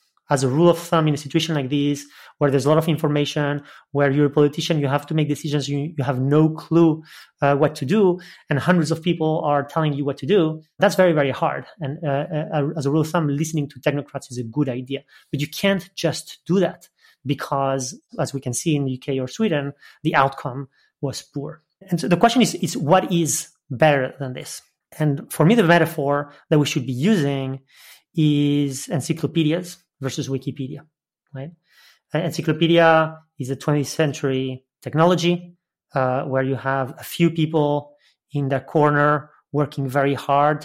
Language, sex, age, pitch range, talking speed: English, male, 30-49, 140-165 Hz, 190 wpm